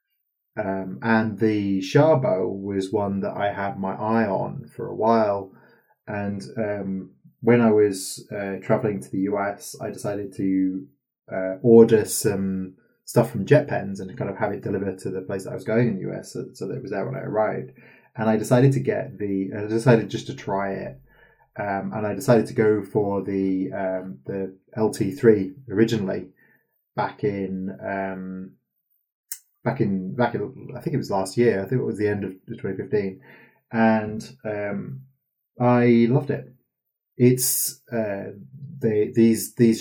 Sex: male